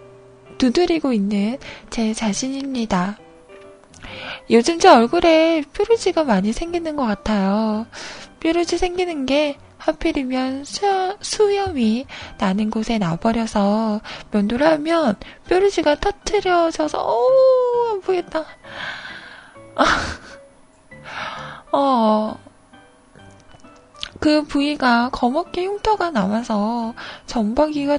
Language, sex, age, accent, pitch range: Korean, female, 20-39, native, 225-330 Hz